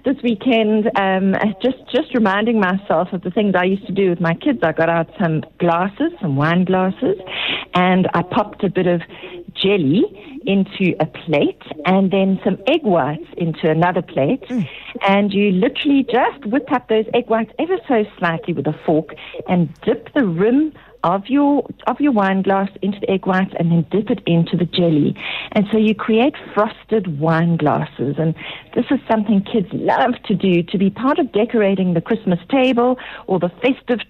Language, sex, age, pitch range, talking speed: English, female, 50-69, 175-230 Hz, 185 wpm